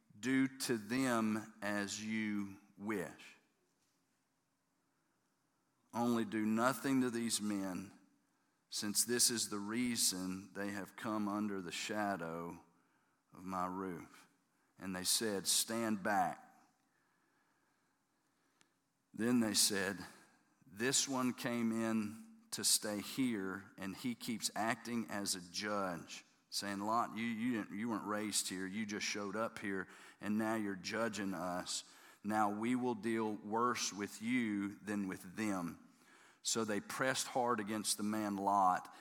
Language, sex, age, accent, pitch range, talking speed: English, male, 40-59, American, 100-125 Hz, 130 wpm